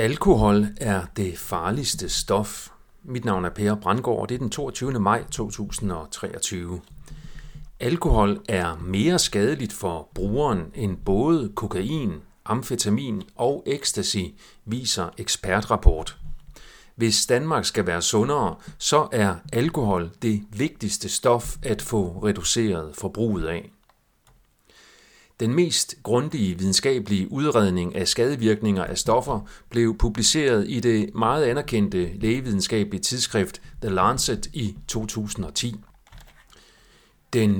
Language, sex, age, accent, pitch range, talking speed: Danish, male, 40-59, native, 95-120 Hz, 110 wpm